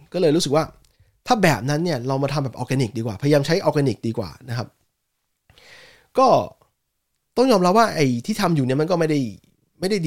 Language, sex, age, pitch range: Thai, male, 20-39, 125-165 Hz